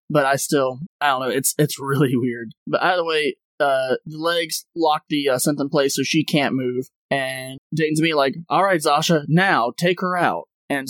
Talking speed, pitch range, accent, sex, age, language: 210 wpm, 140-165 Hz, American, male, 20-39, English